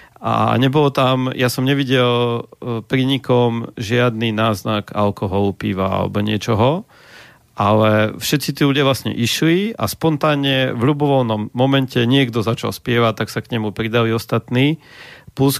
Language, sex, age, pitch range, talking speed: Slovak, male, 40-59, 110-130 Hz, 135 wpm